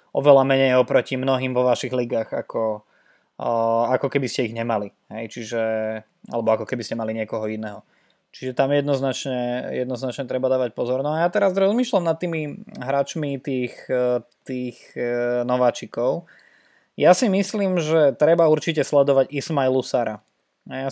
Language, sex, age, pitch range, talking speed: Slovak, male, 20-39, 125-150 Hz, 145 wpm